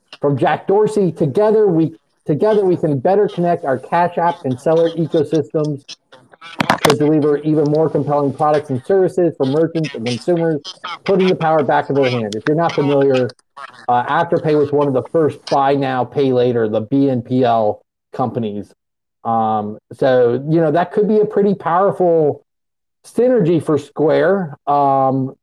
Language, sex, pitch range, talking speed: English, male, 140-180 Hz, 160 wpm